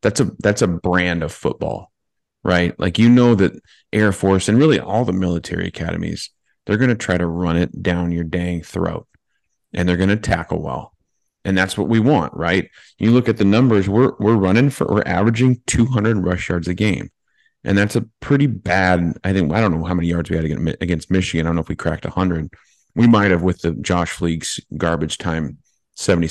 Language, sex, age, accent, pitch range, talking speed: English, male, 30-49, American, 85-110 Hz, 210 wpm